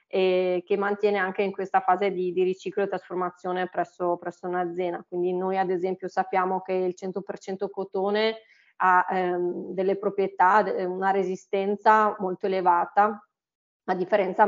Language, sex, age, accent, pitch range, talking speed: Italian, female, 20-39, native, 180-200 Hz, 140 wpm